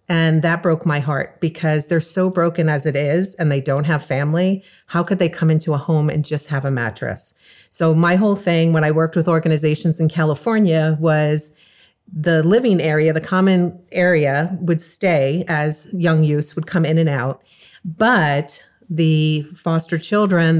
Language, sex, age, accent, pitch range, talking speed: English, female, 40-59, American, 155-170 Hz, 180 wpm